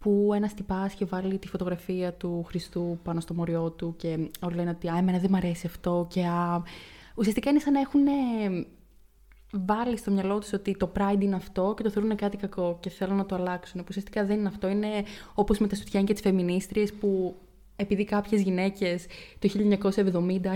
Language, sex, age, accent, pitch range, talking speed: Greek, female, 20-39, native, 185-210 Hz, 195 wpm